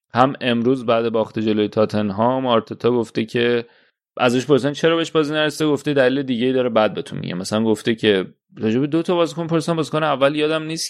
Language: Persian